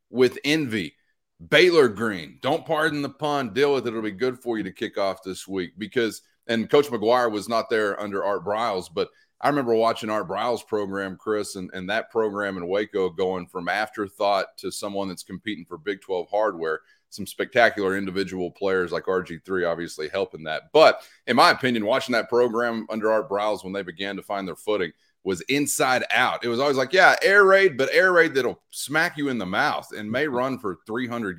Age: 30-49